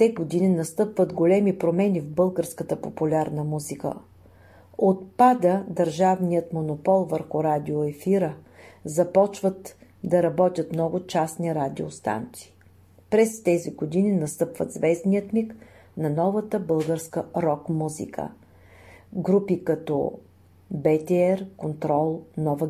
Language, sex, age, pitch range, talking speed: Bulgarian, female, 40-59, 150-180 Hz, 90 wpm